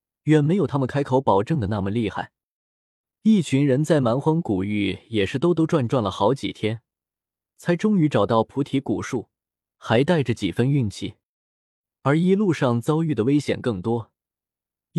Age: 20-39